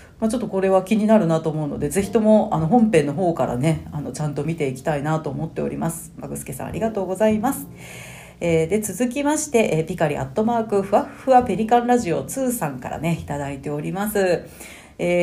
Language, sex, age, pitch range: Japanese, female, 40-59, 165-245 Hz